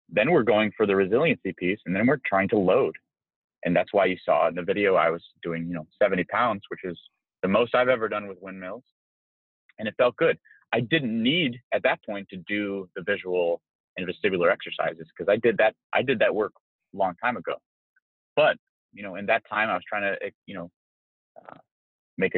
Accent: American